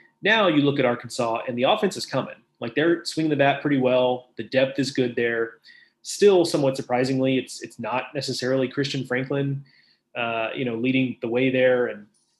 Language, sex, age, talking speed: English, male, 30-49, 190 wpm